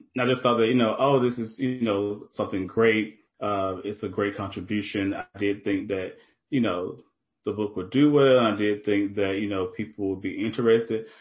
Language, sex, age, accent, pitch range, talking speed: English, male, 30-49, American, 95-110 Hz, 215 wpm